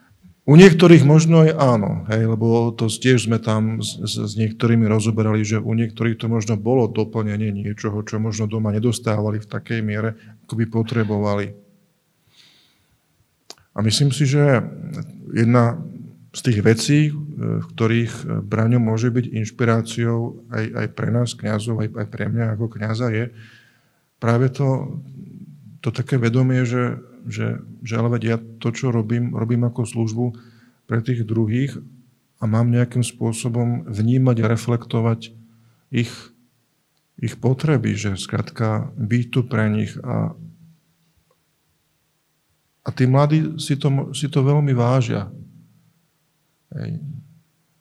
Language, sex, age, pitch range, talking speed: Slovak, male, 50-69, 115-145 Hz, 130 wpm